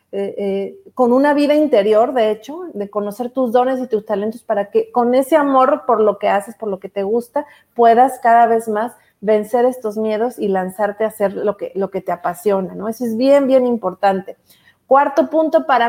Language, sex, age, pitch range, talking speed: Spanish, female, 40-59, 210-260 Hz, 205 wpm